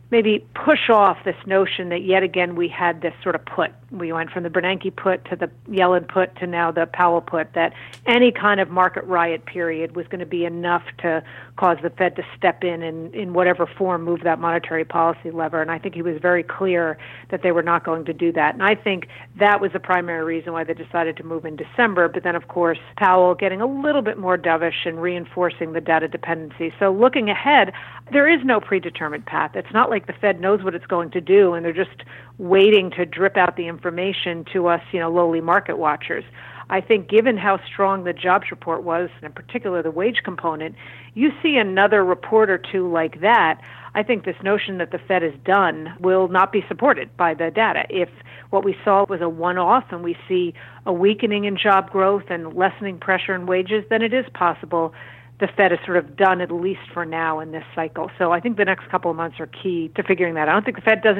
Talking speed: 230 wpm